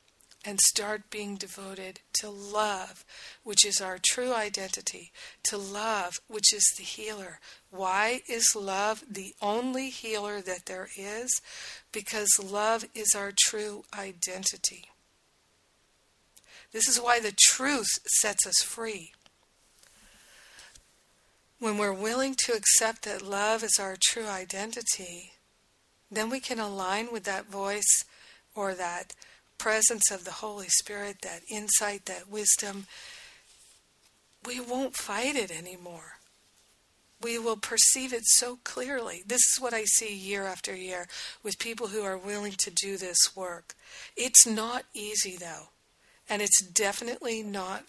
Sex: female